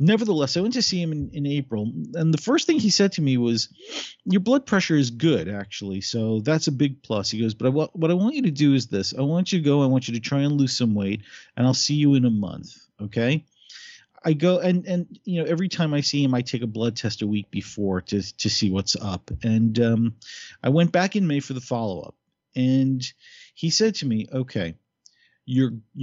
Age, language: 40-59, English